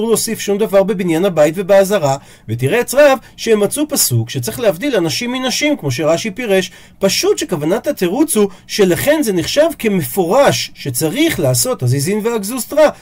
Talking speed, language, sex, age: 145 wpm, Hebrew, male, 40-59